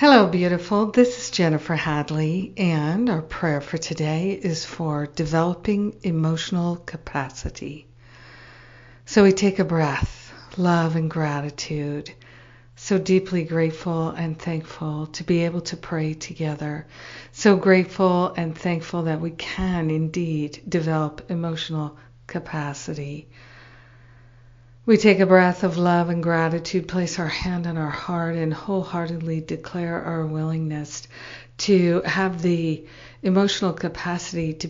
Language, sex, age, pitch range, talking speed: English, female, 50-69, 155-180 Hz, 125 wpm